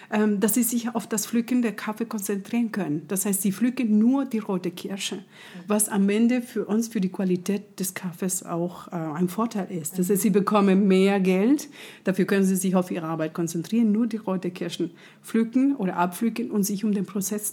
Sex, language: female, German